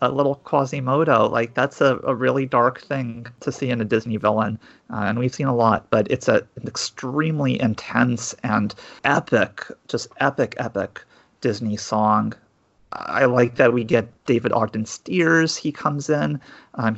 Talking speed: 165 wpm